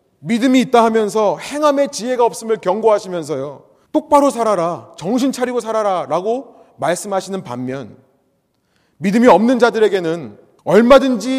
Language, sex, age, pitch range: Korean, male, 30-49, 150-220 Hz